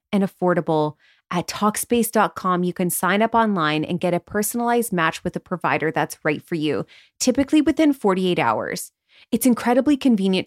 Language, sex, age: English, female, 20-39